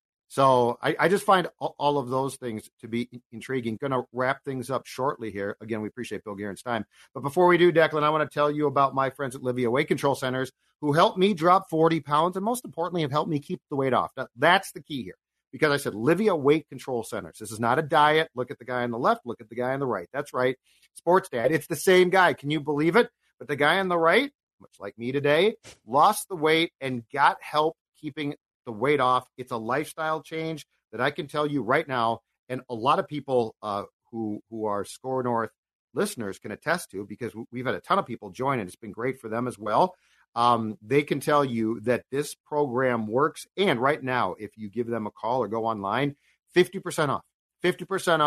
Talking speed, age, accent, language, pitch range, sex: 235 wpm, 40-59, American, English, 115-150 Hz, male